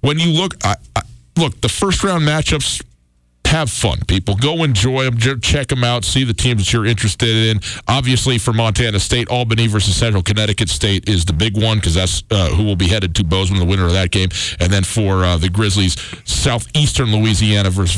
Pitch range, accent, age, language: 105-140 Hz, American, 40-59, English